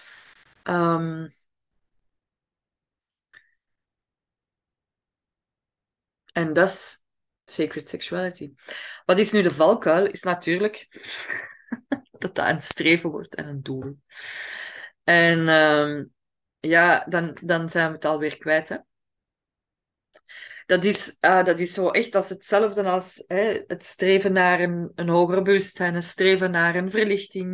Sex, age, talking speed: female, 20-39, 120 wpm